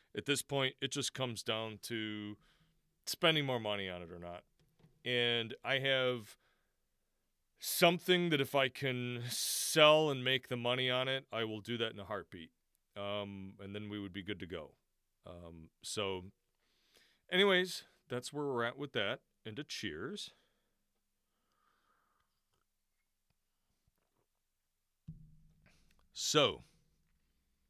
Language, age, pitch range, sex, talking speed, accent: English, 40-59, 100-145 Hz, male, 130 wpm, American